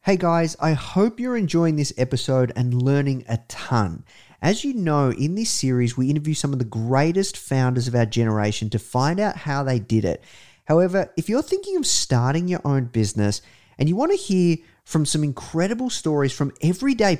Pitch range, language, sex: 115-160 Hz, English, male